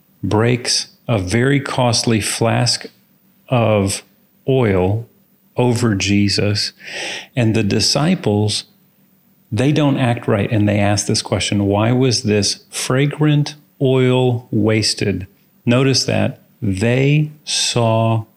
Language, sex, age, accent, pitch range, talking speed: English, male, 40-59, American, 105-145 Hz, 100 wpm